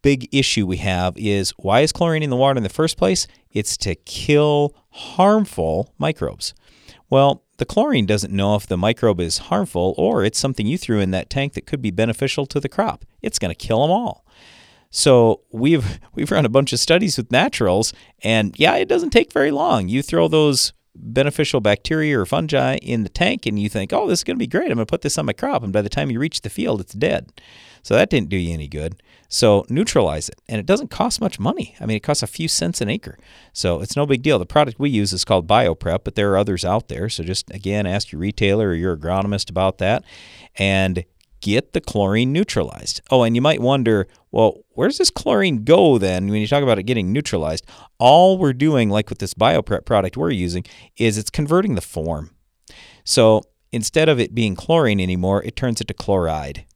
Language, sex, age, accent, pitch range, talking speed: English, male, 40-59, American, 95-135 Hz, 220 wpm